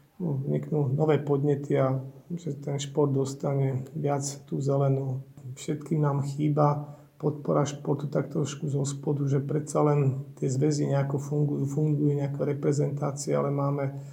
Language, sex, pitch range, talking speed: Slovak, male, 140-150 Hz, 125 wpm